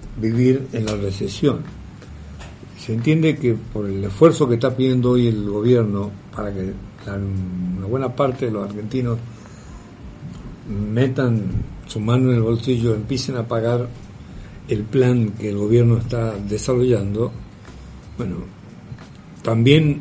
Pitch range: 105-125 Hz